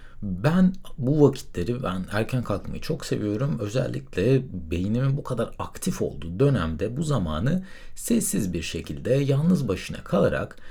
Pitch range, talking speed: 105-150 Hz, 130 wpm